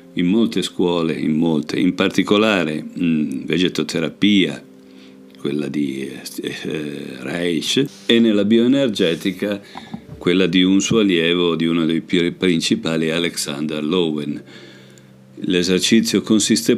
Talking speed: 100 wpm